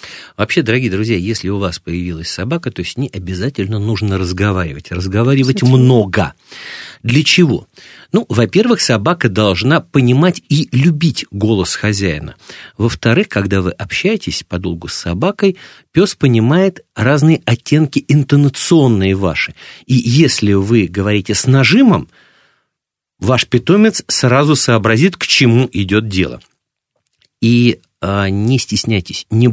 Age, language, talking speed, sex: 50-69, Russian, 120 wpm, male